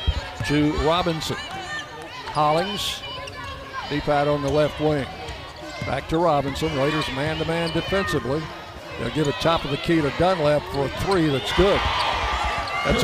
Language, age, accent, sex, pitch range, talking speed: English, 60-79, American, male, 140-165 Hz, 140 wpm